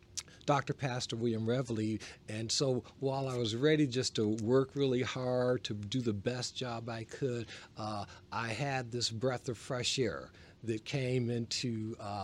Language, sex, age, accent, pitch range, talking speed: English, male, 40-59, American, 100-125 Hz, 165 wpm